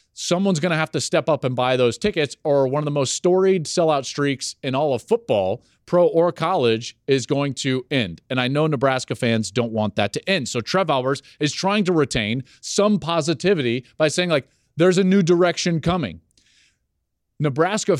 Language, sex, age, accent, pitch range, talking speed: English, male, 40-59, American, 130-190 Hz, 195 wpm